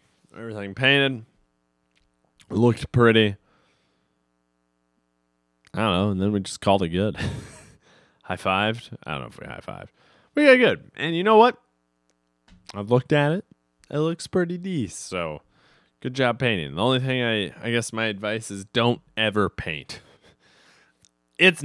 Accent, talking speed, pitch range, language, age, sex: American, 145 wpm, 75-125 Hz, English, 30-49, male